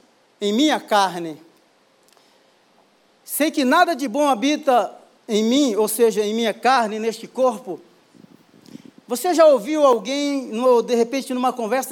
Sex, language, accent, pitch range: male, Portuguese, Brazilian, 235-285 Hz